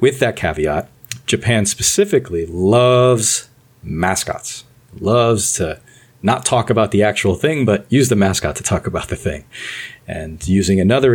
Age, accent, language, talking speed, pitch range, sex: 40-59, American, English, 145 wpm, 90-120 Hz, male